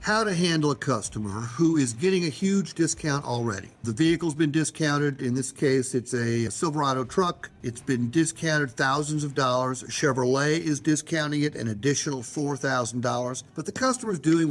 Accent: American